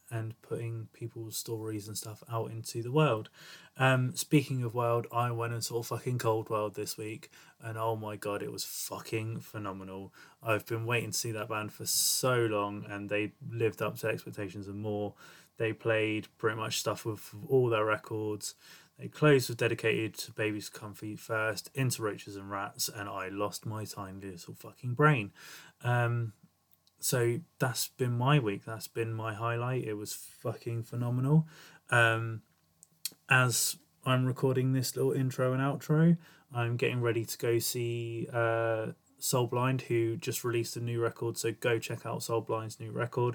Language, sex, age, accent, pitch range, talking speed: English, male, 20-39, British, 110-125 Hz, 170 wpm